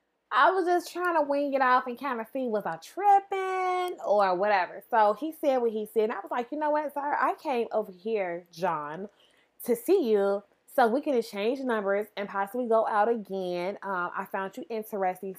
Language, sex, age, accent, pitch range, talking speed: English, female, 20-39, American, 190-240 Hz, 210 wpm